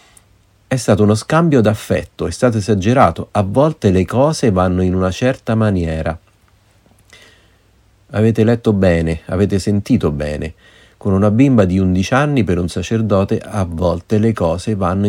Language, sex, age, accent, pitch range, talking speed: Italian, male, 40-59, native, 85-110 Hz, 145 wpm